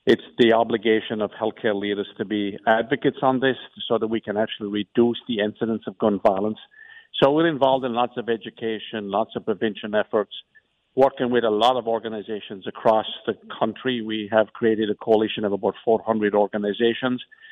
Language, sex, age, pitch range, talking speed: English, male, 50-69, 110-125 Hz, 175 wpm